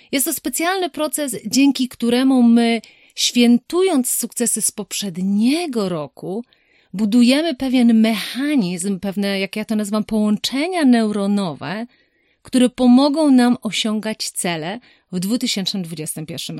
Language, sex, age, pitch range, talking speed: Polish, female, 30-49, 190-255 Hz, 105 wpm